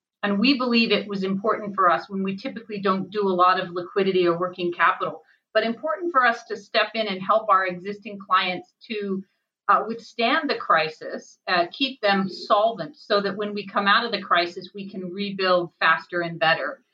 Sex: female